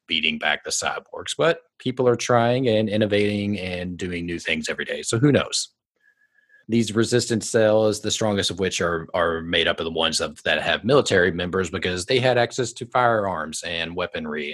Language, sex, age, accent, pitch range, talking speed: English, male, 30-49, American, 90-120 Hz, 190 wpm